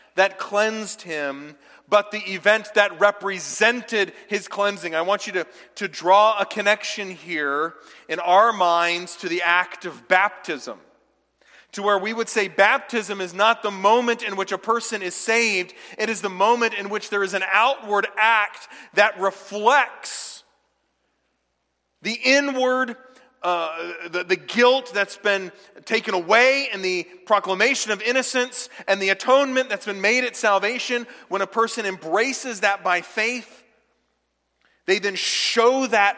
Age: 40-59